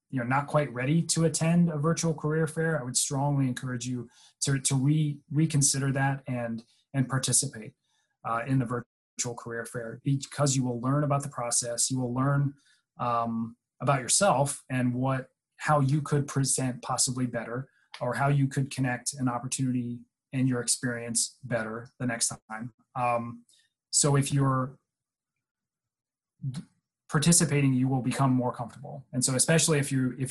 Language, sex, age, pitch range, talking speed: English, male, 30-49, 125-140 Hz, 160 wpm